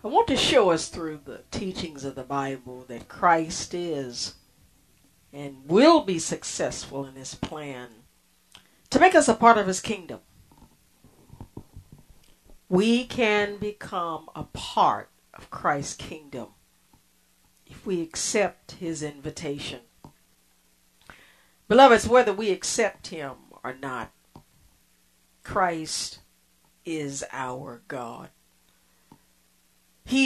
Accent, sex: American, female